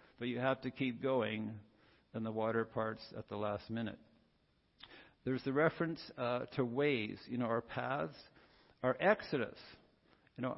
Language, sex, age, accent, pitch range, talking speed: English, male, 50-69, American, 120-145 Hz, 160 wpm